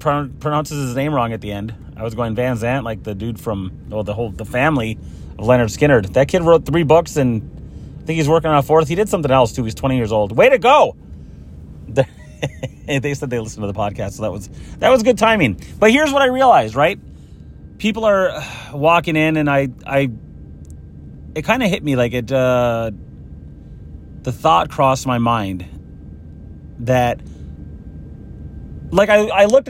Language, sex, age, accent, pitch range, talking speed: English, male, 30-49, American, 105-155 Hz, 190 wpm